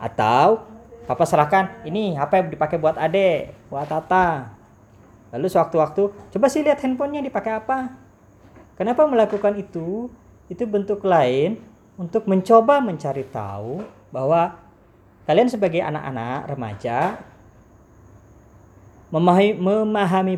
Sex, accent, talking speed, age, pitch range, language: female, native, 100 wpm, 20-39, 140-215 Hz, Indonesian